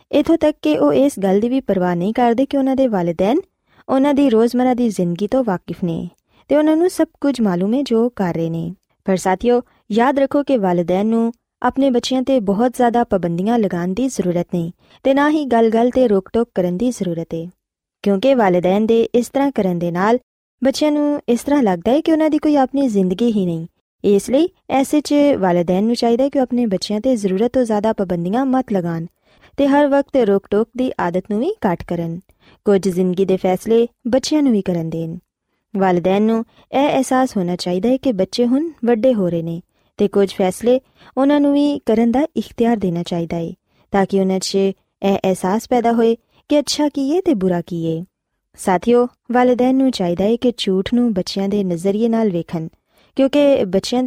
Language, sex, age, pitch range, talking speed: Punjabi, female, 20-39, 185-265 Hz, 175 wpm